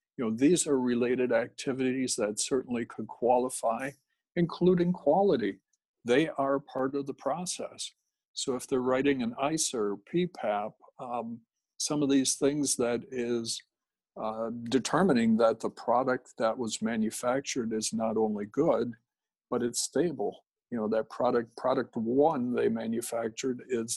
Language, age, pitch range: English, 60-79, 115-140 Hz